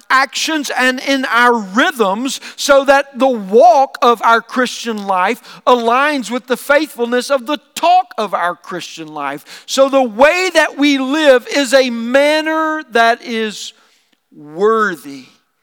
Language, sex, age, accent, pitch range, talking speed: English, male, 50-69, American, 215-260 Hz, 140 wpm